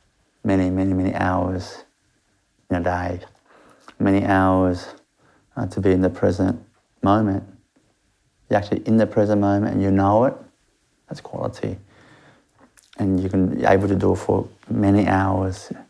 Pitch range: 95-100 Hz